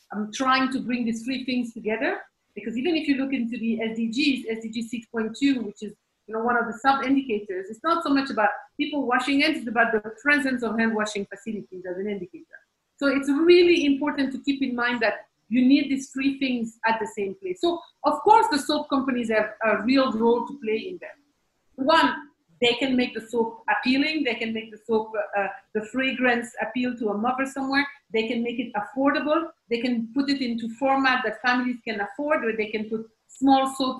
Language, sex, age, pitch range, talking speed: English, female, 50-69, 220-275 Hz, 210 wpm